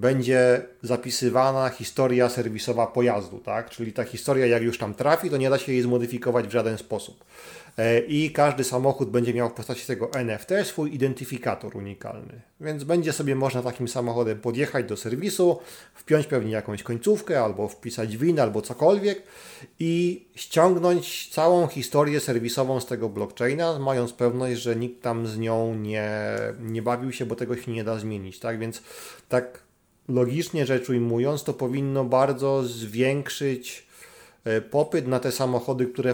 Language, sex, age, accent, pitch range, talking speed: Polish, male, 40-59, native, 115-140 Hz, 155 wpm